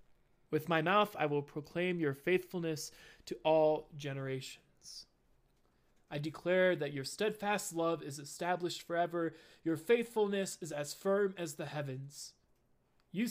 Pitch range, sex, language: 140-175 Hz, male, English